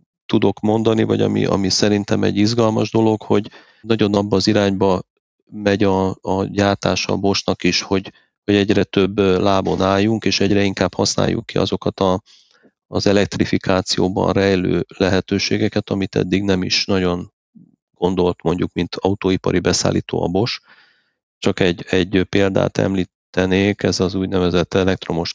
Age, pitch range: 40-59, 90-100 Hz